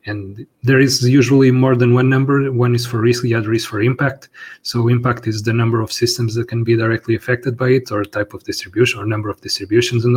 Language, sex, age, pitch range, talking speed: English, male, 30-49, 110-120 Hz, 235 wpm